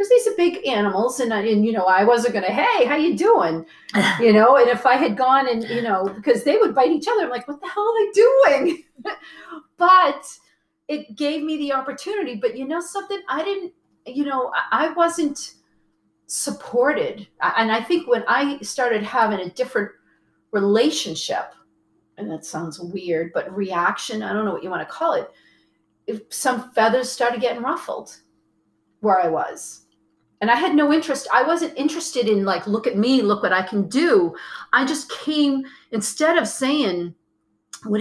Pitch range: 210-320 Hz